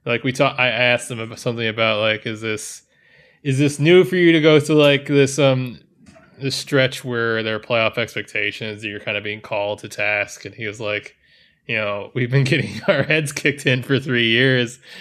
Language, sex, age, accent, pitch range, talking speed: English, male, 20-39, American, 110-140 Hz, 215 wpm